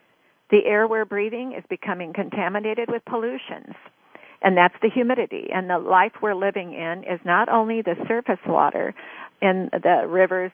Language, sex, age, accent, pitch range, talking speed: English, female, 50-69, American, 185-225 Hz, 160 wpm